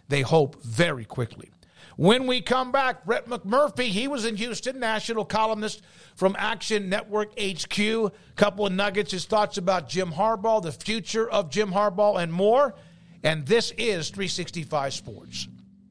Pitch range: 155-220 Hz